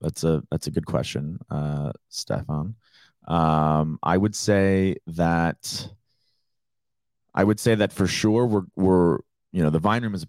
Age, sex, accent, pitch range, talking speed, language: 30-49, male, American, 75-95 Hz, 165 wpm, English